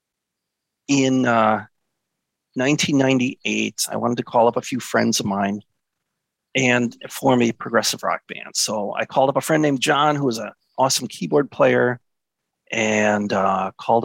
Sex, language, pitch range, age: male, English, 115-155 Hz, 40-59